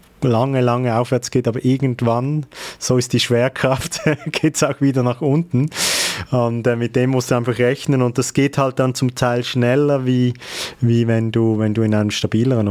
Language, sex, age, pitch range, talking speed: German, male, 30-49, 115-130 Hz, 195 wpm